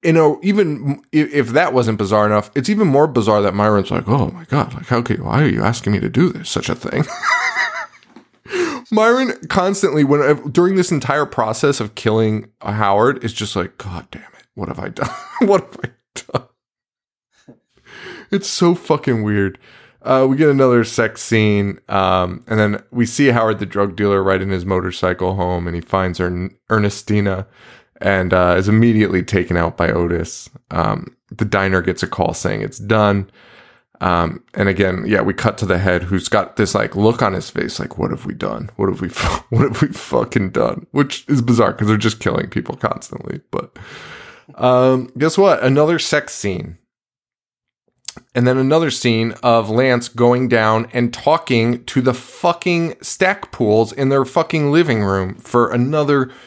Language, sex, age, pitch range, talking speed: English, male, 20-39, 100-140 Hz, 185 wpm